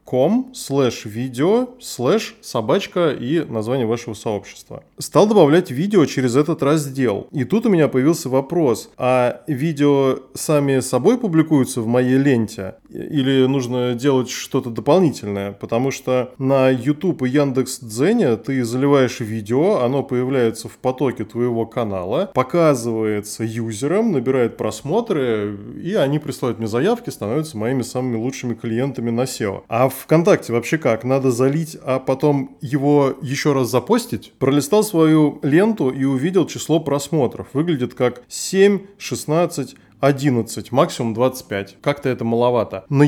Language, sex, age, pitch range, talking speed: Russian, male, 20-39, 120-150 Hz, 135 wpm